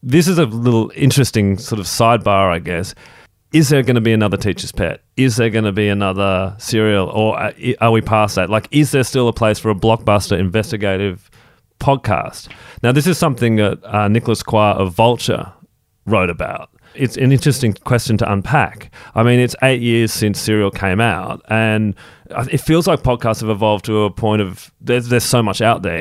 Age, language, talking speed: 30-49, English, 195 wpm